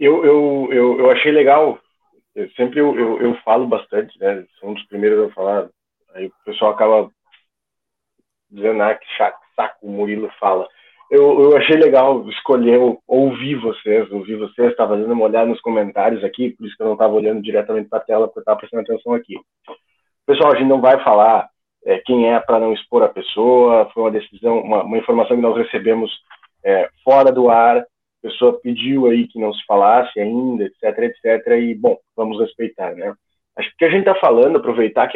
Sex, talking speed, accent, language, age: male, 200 wpm, Brazilian, Portuguese, 20-39